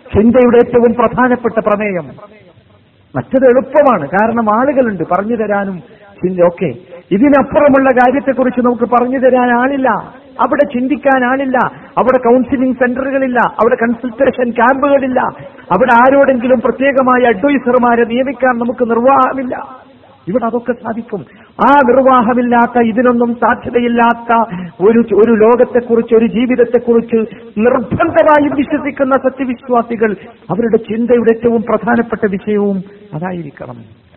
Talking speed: 90 wpm